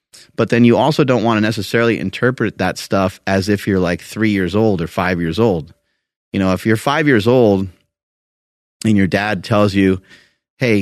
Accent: American